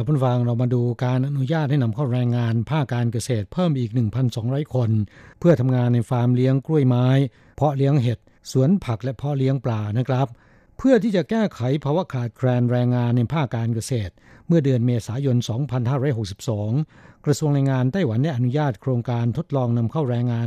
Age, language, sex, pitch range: 60-79, Thai, male, 120-140 Hz